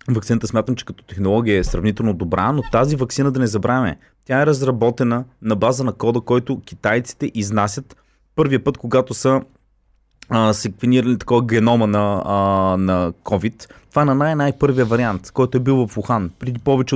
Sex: male